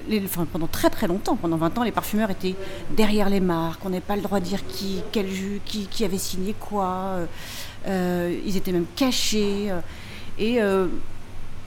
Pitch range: 165-210 Hz